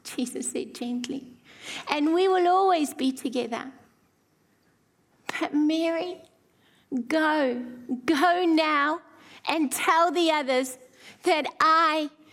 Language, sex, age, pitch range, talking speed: English, female, 30-49, 305-395 Hz, 95 wpm